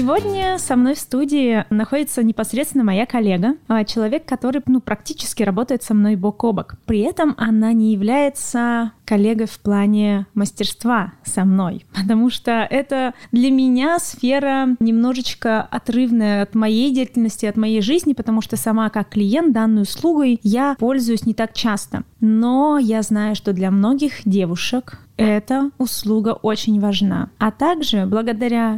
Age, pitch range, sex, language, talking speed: 20-39, 215-270 Hz, female, Russian, 145 wpm